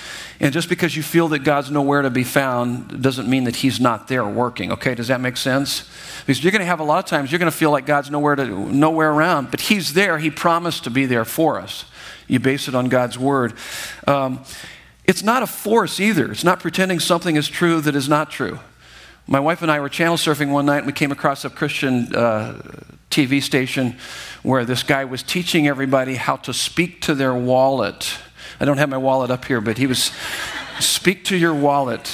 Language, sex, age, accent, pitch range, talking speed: English, male, 50-69, American, 130-165 Hz, 220 wpm